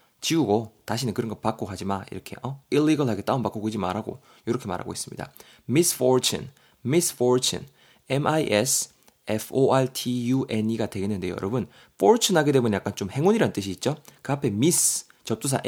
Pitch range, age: 105-145 Hz, 20-39